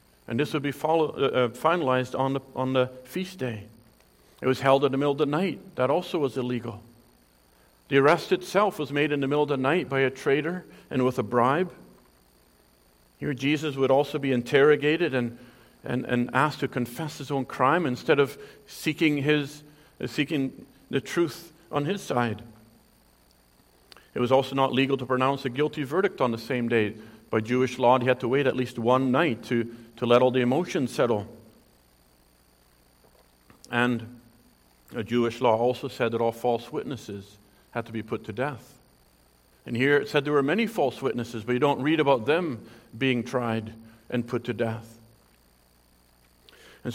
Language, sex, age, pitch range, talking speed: English, male, 50-69, 110-145 Hz, 180 wpm